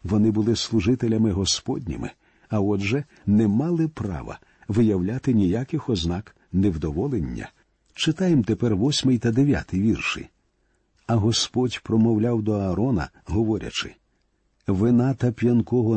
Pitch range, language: 105-135 Hz, Ukrainian